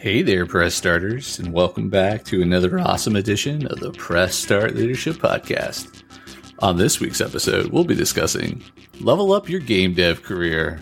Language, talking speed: English, 165 wpm